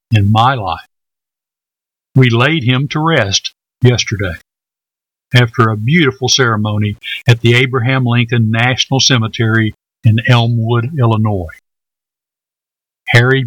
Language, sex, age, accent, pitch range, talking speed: English, male, 50-69, American, 115-130 Hz, 105 wpm